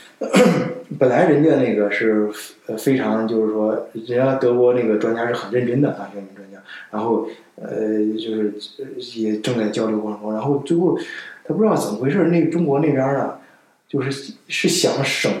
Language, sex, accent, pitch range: Chinese, male, native, 110-145 Hz